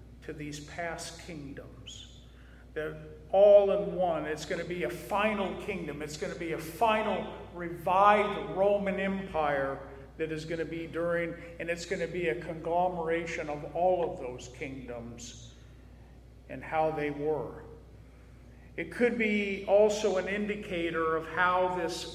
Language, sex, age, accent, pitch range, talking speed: English, male, 50-69, American, 150-195 Hz, 150 wpm